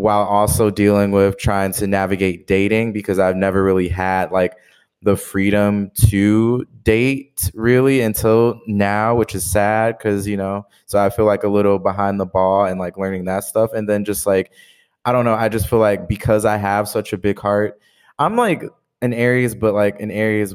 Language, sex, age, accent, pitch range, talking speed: English, male, 20-39, American, 100-110 Hz, 195 wpm